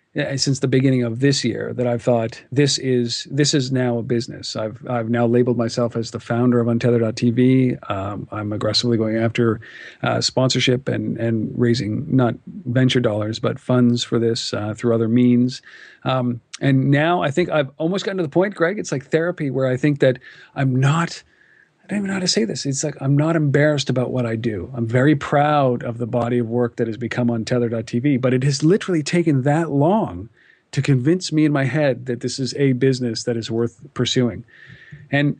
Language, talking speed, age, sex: English, 205 wpm, 40-59, male